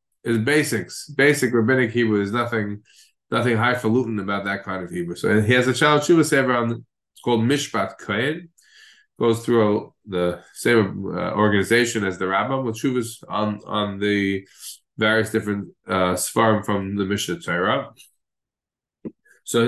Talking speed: 150 wpm